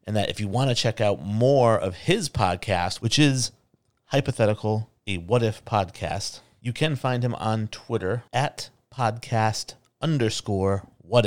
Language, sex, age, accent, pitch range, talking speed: English, male, 40-59, American, 95-120 Hz, 155 wpm